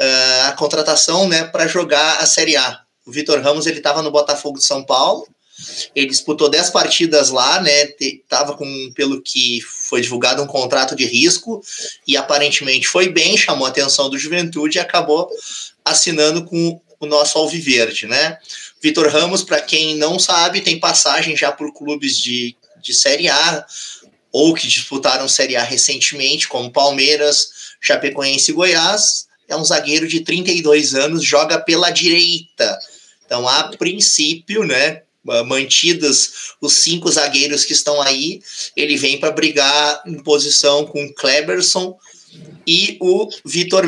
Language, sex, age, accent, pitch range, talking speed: Portuguese, male, 20-39, Brazilian, 145-170 Hz, 150 wpm